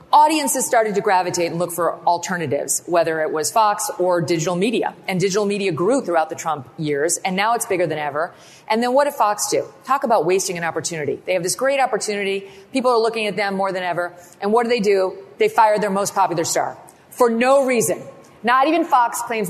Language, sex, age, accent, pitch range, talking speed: English, female, 40-59, American, 185-245 Hz, 220 wpm